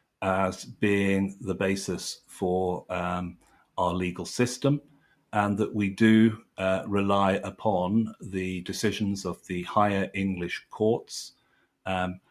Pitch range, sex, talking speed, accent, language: 95-110 Hz, male, 115 wpm, British, English